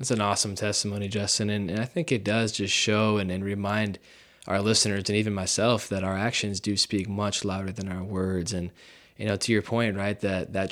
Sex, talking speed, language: male, 225 wpm, English